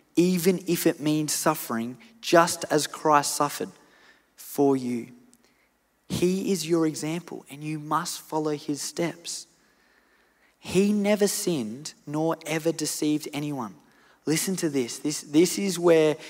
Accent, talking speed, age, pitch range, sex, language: Australian, 130 wpm, 20-39, 135-170 Hz, male, English